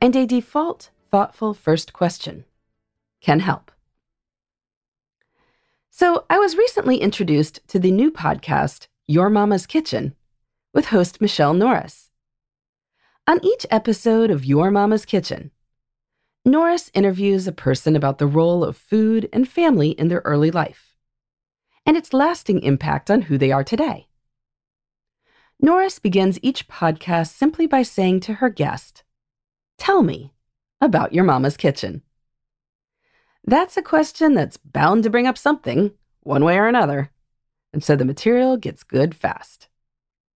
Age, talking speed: 40-59, 135 wpm